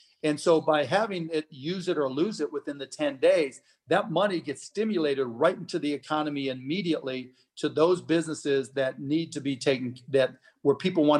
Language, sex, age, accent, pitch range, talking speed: English, male, 40-59, American, 135-160 Hz, 190 wpm